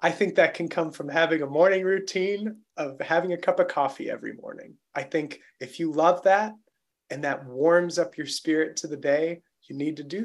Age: 30-49